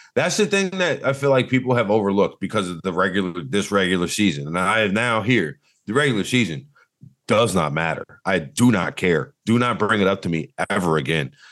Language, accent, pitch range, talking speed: English, American, 95-125 Hz, 215 wpm